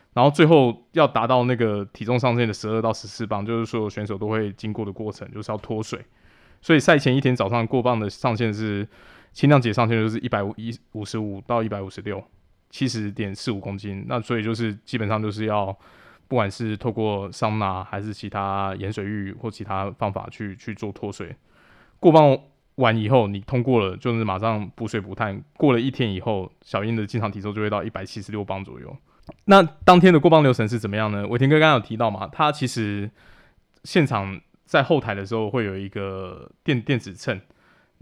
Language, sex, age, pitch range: Chinese, male, 20-39, 105-125 Hz